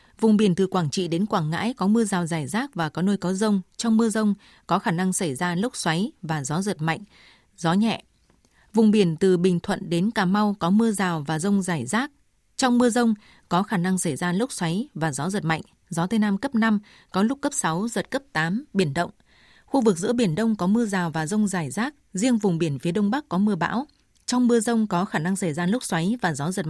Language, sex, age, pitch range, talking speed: Vietnamese, female, 20-39, 175-220 Hz, 250 wpm